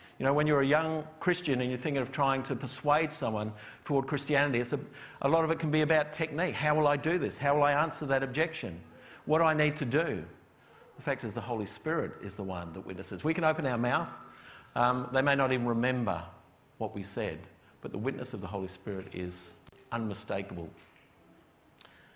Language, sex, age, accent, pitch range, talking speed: English, male, 50-69, Australian, 115-145 Hz, 210 wpm